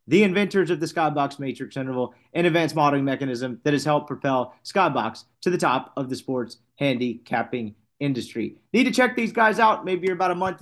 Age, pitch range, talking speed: 30-49, 130-180 Hz, 200 wpm